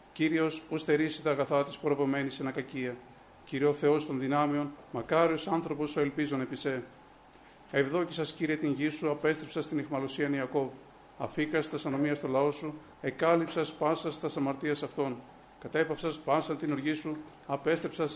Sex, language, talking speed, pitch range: male, Greek, 145 wpm, 140-155 Hz